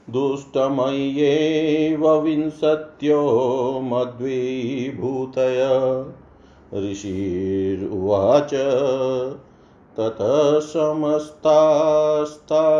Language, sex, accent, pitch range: Hindi, male, native, 135-155 Hz